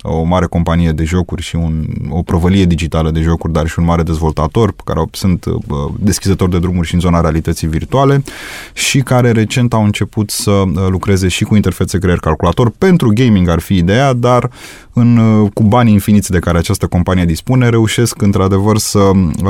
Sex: male